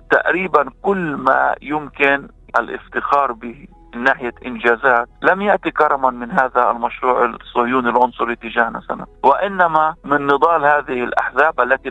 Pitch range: 135-185 Hz